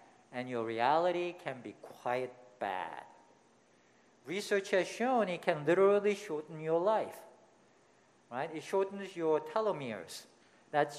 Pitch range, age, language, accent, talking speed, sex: 130-200 Hz, 50-69, English, Japanese, 120 wpm, male